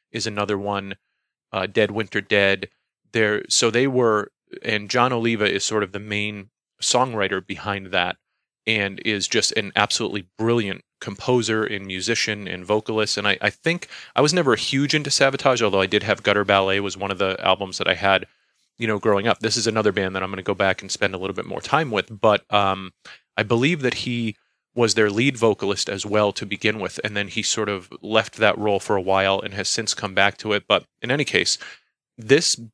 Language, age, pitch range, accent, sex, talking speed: English, 30-49, 100-115 Hz, American, male, 215 wpm